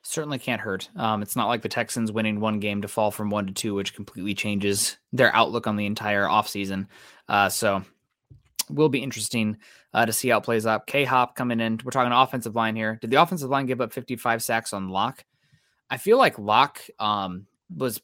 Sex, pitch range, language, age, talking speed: male, 110-130 Hz, English, 20-39, 215 wpm